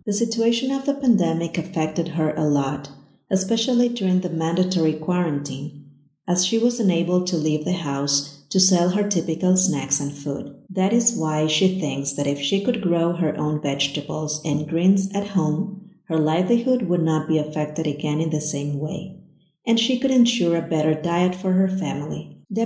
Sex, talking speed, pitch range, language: female, 180 wpm, 160-200 Hz, English